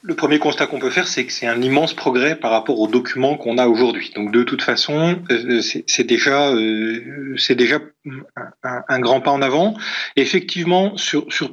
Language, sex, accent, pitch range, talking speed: French, male, French, 125-175 Hz, 180 wpm